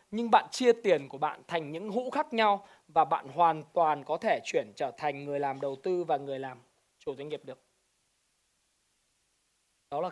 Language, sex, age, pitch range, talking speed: Vietnamese, male, 20-39, 155-210 Hz, 195 wpm